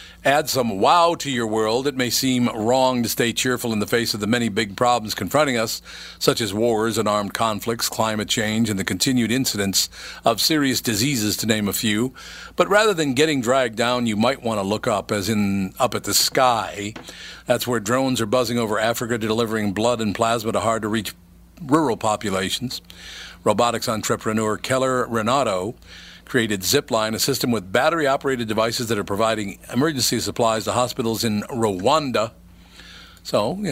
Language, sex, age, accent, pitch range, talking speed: English, male, 50-69, American, 105-125 Hz, 175 wpm